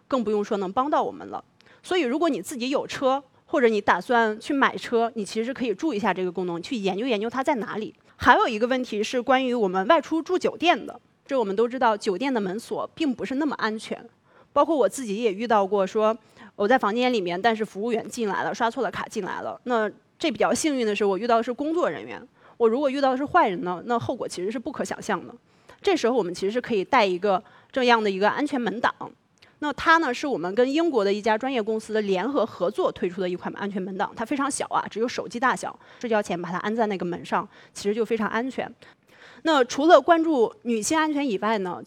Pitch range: 205-265 Hz